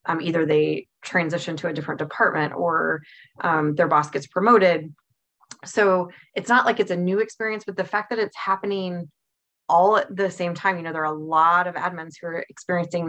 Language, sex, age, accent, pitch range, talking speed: English, female, 20-39, American, 160-190 Hz, 200 wpm